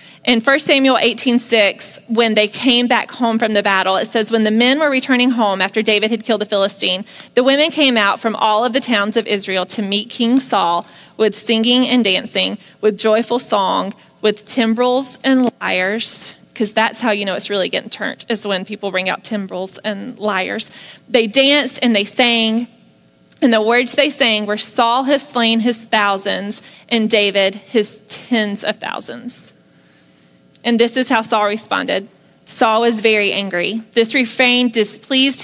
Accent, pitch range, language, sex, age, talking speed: American, 210-250 Hz, English, female, 30-49, 180 wpm